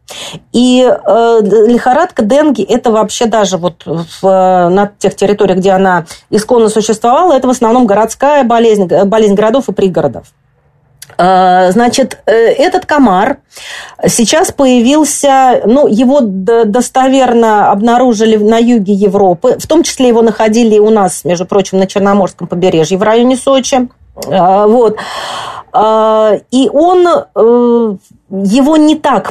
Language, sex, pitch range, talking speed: Russian, female, 200-260 Hz, 110 wpm